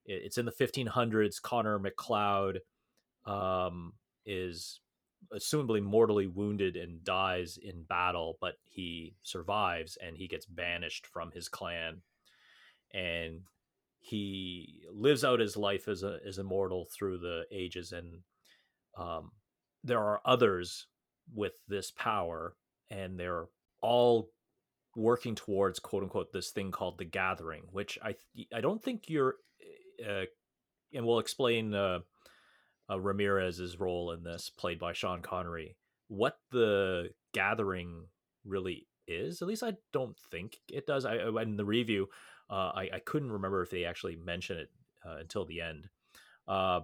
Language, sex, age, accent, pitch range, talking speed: English, male, 30-49, American, 90-115 Hz, 140 wpm